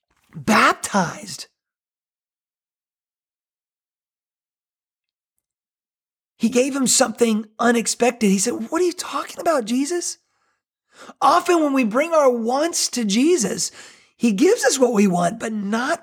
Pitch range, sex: 215-270 Hz, male